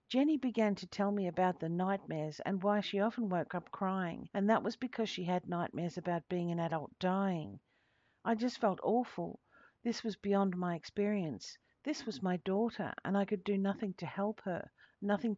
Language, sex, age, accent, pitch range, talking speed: English, female, 50-69, Australian, 165-210 Hz, 190 wpm